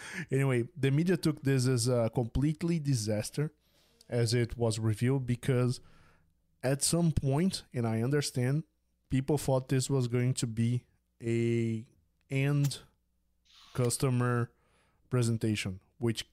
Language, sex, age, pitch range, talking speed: English, male, 20-39, 115-140 Hz, 120 wpm